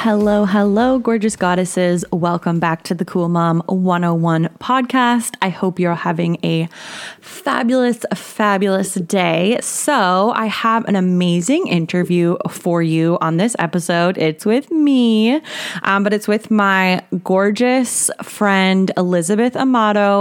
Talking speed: 130 wpm